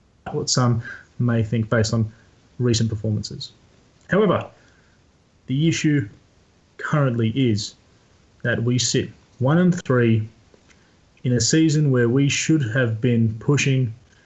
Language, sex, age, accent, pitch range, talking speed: English, male, 30-49, Australian, 110-135 Hz, 120 wpm